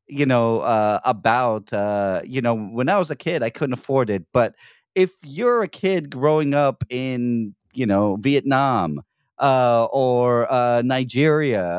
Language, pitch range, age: English, 115-160 Hz, 40-59